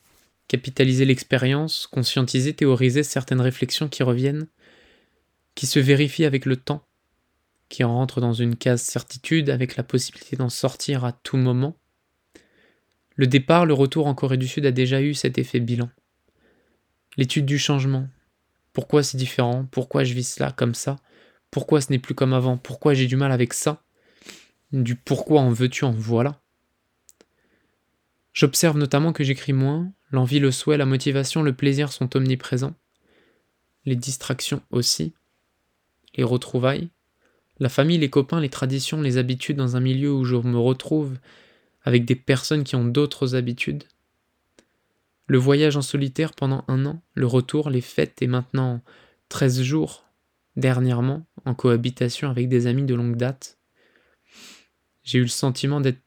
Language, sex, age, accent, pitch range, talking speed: French, male, 20-39, French, 125-140 Hz, 155 wpm